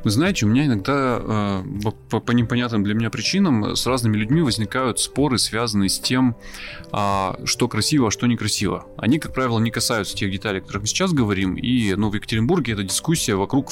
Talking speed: 185 wpm